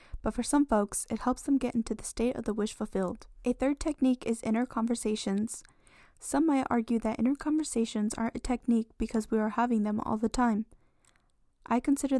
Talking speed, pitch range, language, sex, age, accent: 195 wpm, 215-250 Hz, English, female, 10-29, American